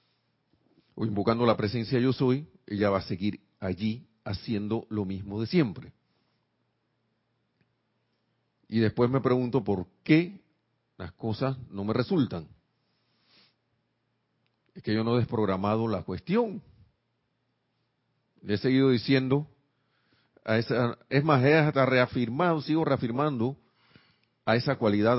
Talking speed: 120 wpm